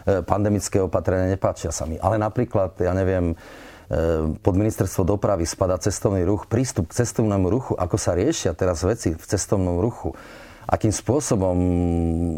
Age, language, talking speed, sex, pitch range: 30-49, Slovak, 140 wpm, male, 90-105 Hz